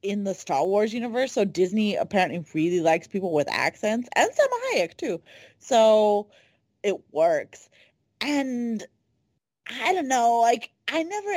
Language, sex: English, female